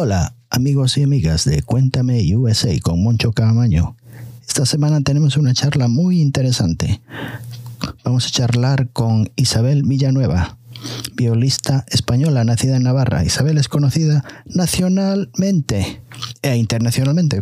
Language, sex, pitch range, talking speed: Spanish, male, 120-140 Hz, 115 wpm